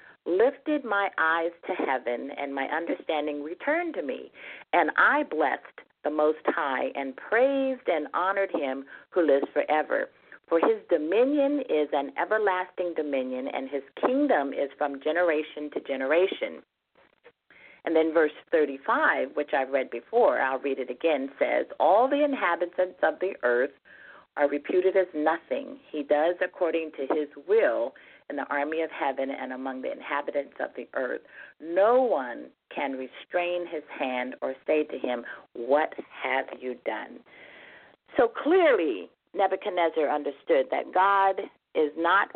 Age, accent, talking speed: 50-69, American, 145 wpm